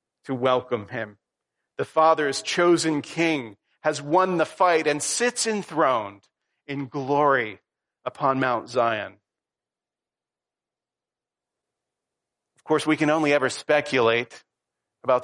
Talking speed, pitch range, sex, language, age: 105 wpm, 135-175 Hz, male, English, 40-59